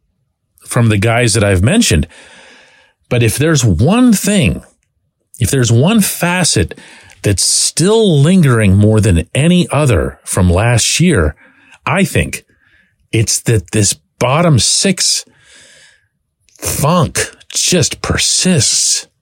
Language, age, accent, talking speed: English, 40-59, American, 110 wpm